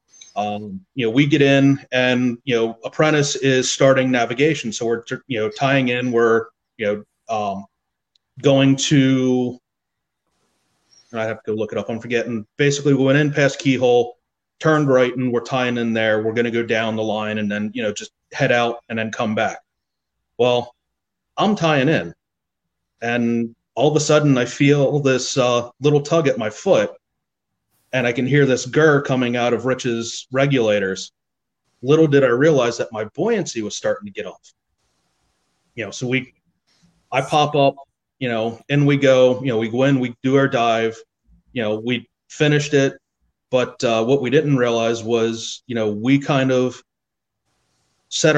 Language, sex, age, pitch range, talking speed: English, male, 30-49, 115-140 Hz, 180 wpm